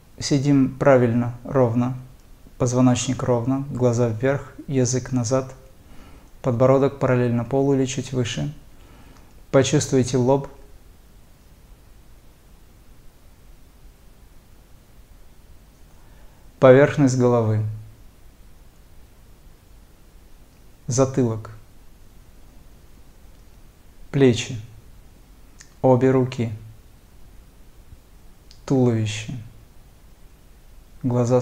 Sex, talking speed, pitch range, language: male, 50 wpm, 100-130 Hz, Russian